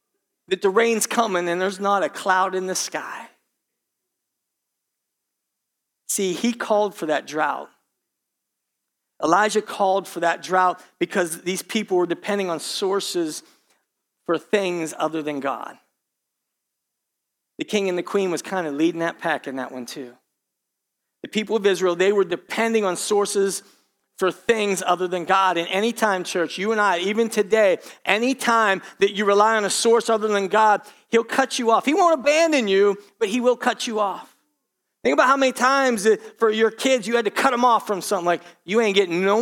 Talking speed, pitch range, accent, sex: 180 wpm, 185-245 Hz, American, male